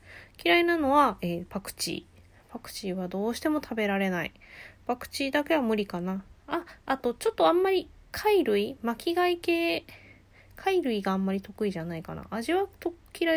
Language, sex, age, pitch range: Japanese, female, 20-39, 185-275 Hz